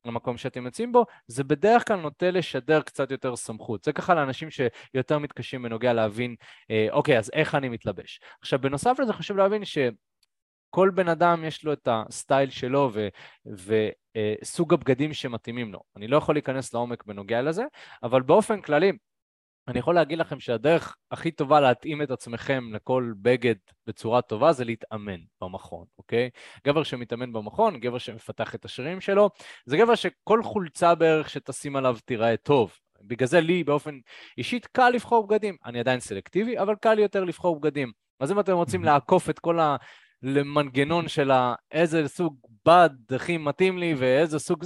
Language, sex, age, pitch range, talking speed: Hebrew, male, 20-39, 120-175 Hz, 165 wpm